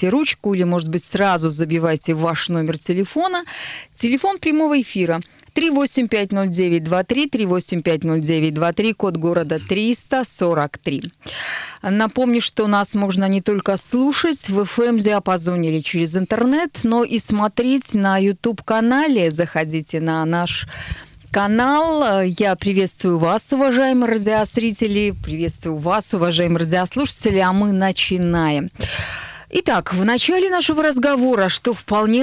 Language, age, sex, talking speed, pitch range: Russian, 20-39, female, 125 wpm, 175-240 Hz